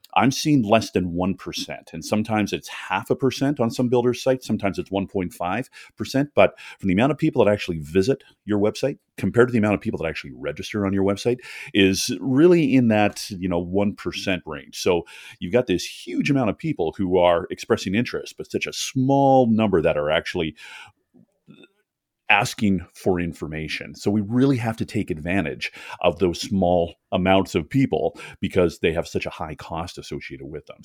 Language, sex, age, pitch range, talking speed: English, male, 40-59, 90-120 Hz, 185 wpm